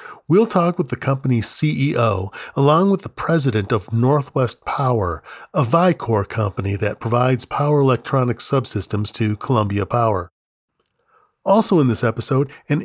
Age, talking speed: 40-59, 135 wpm